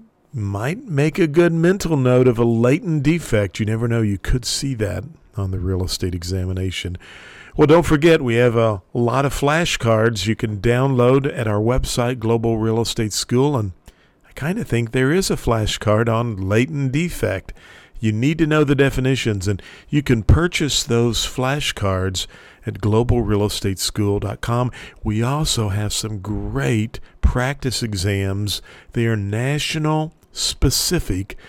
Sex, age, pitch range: male, 50-69, 100-135 Hz